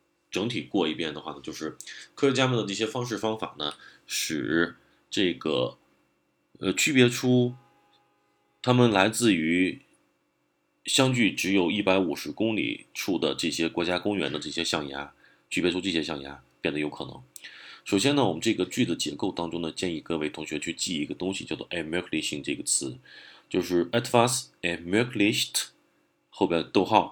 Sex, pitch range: male, 80-110 Hz